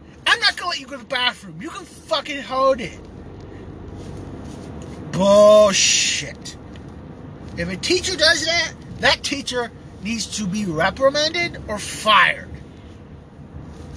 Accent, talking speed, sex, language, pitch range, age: American, 125 wpm, male, English, 160-230 Hz, 30-49